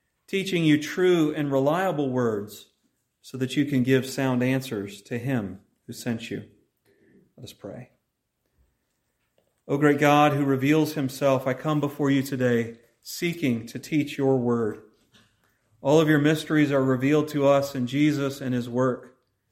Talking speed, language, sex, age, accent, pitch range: 150 wpm, English, male, 40-59, American, 120-145 Hz